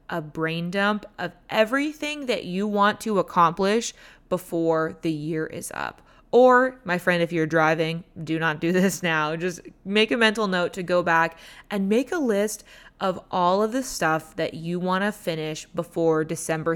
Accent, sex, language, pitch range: American, female, English, 160-195 Hz